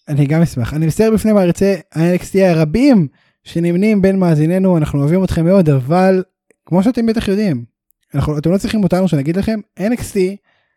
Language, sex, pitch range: Hebrew, male, 145-195 Hz